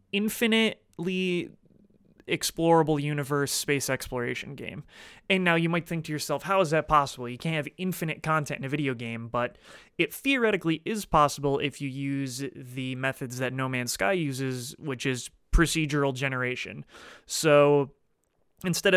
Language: English